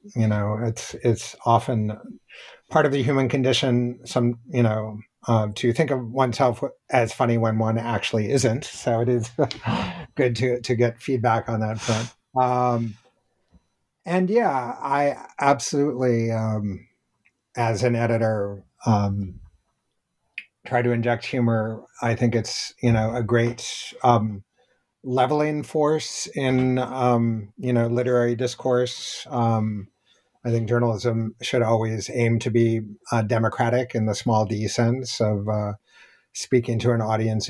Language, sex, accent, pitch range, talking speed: English, male, American, 110-125 Hz, 140 wpm